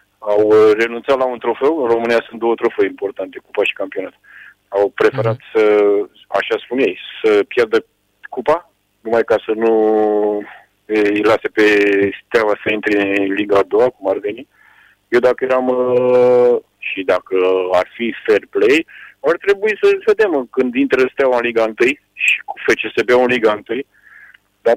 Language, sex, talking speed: Romanian, male, 160 wpm